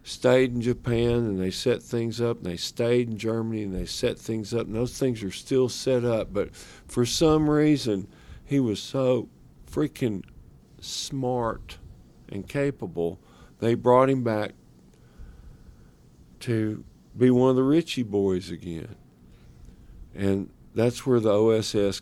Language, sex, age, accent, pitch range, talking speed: English, male, 50-69, American, 90-120 Hz, 145 wpm